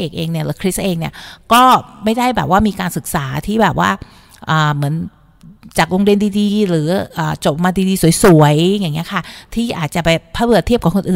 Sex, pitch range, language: female, 165-210 Hz, Thai